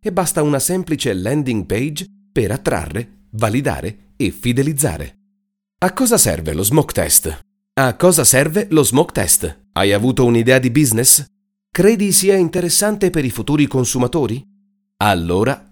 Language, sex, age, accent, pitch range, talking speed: Italian, male, 40-59, native, 110-175 Hz, 135 wpm